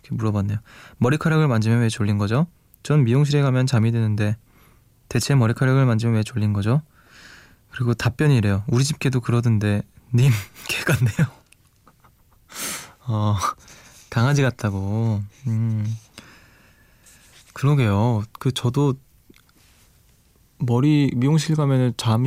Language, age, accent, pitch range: Korean, 20-39, native, 110-140 Hz